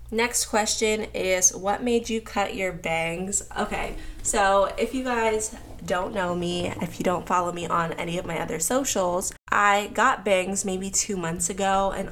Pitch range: 170-215 Hz